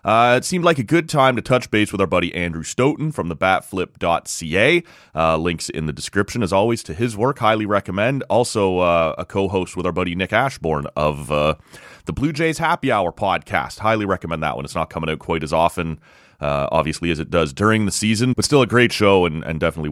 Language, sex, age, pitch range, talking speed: English, male, 30-49, 85-125 Hz, 220 wpm